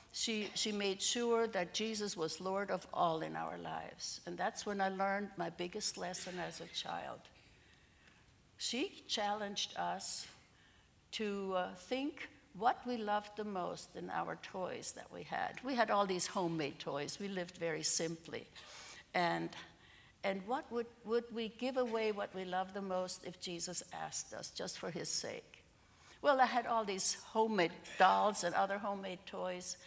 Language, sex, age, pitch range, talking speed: English, female, 60-79, 180-220 Hz, 165 wpm